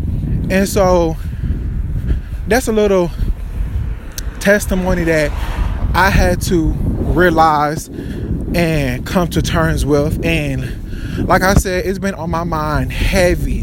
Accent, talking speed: American, 115 wpm